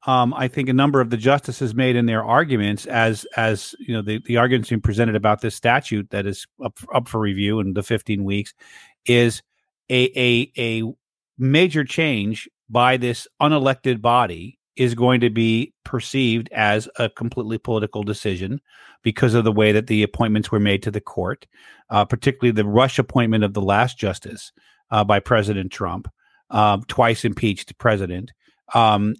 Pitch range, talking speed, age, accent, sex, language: 110-130 Hz, 175 wpm, 40-59, American, male, English